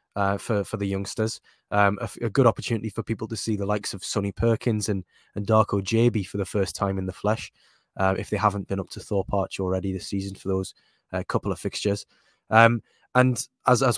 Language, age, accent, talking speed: English, 20-39, British, 225 wpm